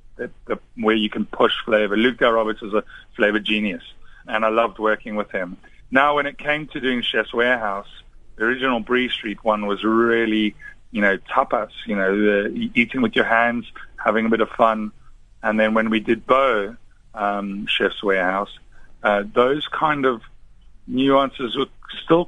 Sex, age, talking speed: male, 30-49, 180 wpm